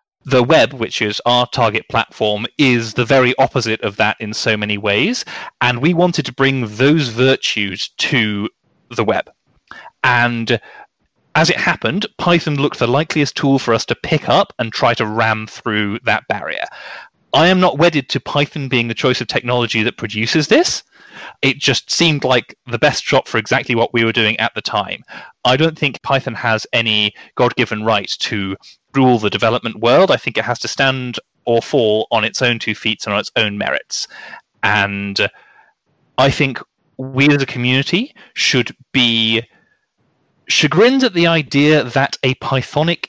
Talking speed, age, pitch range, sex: 175 wpm, 30-49, 115-140 Hz, male